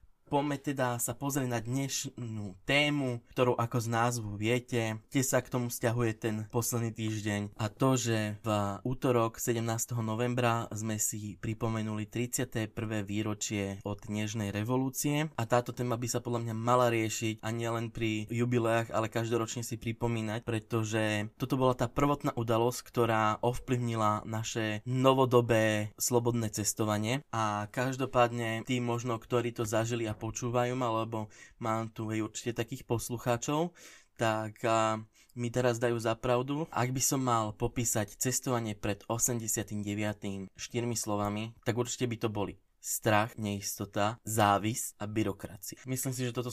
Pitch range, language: 110-125 Hz, Slovak